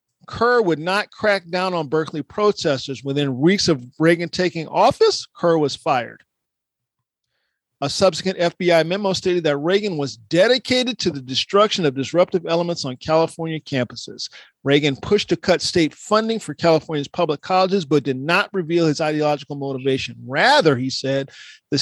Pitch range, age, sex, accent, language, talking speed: 145-185 Hz, 50-69, male, American, English, 155 wpm